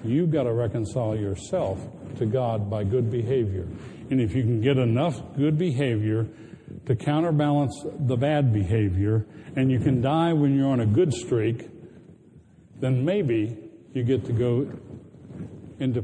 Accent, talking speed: American, 150 wpm